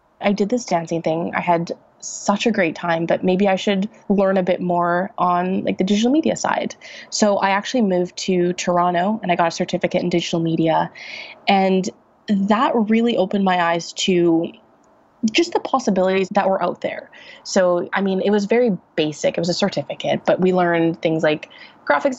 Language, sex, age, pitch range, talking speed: English, female, 20-39, 170-200 Hz, 190 wpm